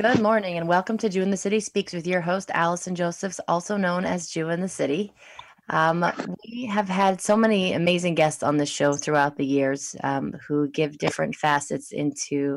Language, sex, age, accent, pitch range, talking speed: English, female, 30-49, American, 150-185 Hz, 200 wpm